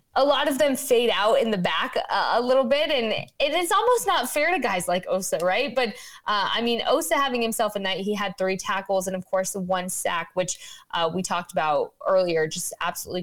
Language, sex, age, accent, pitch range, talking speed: English, female, 20-39, American, 180-235 Hz, 225 wpm